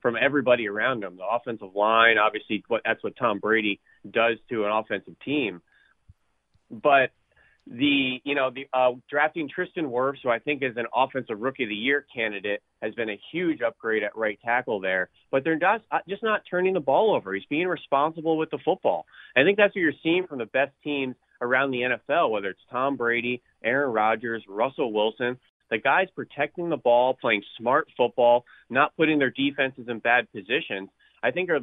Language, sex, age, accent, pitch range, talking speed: English, male, 30-49, American, 110-145 Hz, 190 wpm